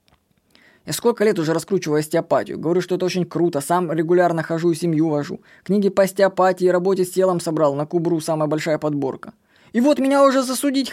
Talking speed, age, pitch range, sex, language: 190 wpm, 20-39, 170-230 Hz, female, Russian